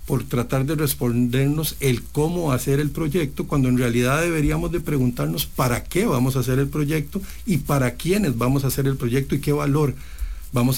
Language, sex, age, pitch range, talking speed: English, male, 50-69, 120-150 Hz, 190 wpm